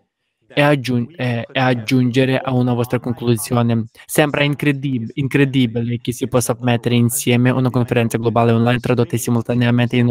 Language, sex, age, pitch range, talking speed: Italian, male, 20-39, 120-135 Hz, 125 wpm